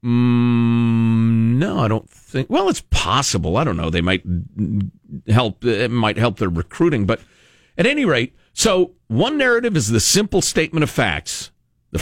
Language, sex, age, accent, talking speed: English, male, 50-69, American, 160 wpm